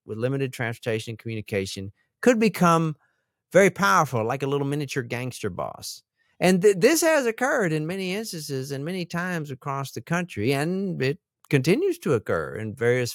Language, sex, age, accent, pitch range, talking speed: English, male, 50-69, American, 115-160 Hz, 160 wpm